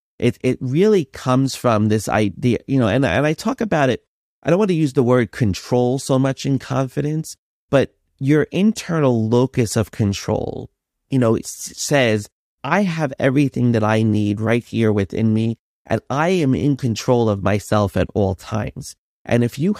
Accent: American